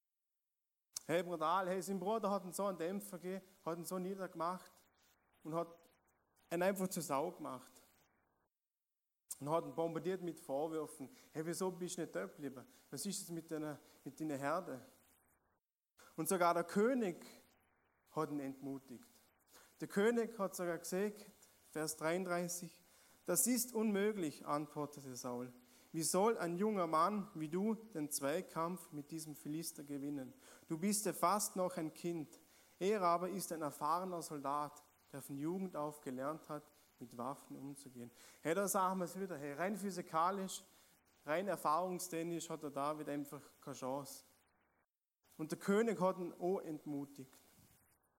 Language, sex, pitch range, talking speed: German, male, 145-185 Hz, 150 wpm